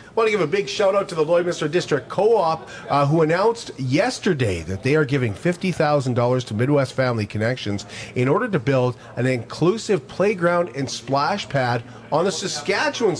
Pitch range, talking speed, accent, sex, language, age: 120-150 Hz, 175 wpm, American, male, English, 40-59